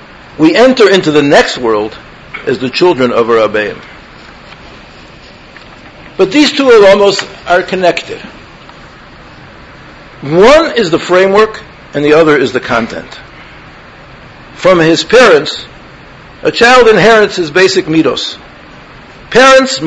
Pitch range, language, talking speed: 170-250 Hz, English, 110 wpm